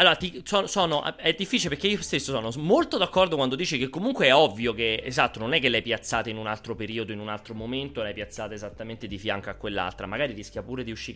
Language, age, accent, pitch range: Italian, 30-49, native, 105-145 Hz